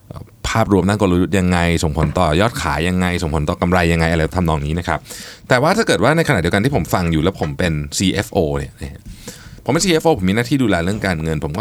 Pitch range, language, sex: 90-120 Hz, Thai, male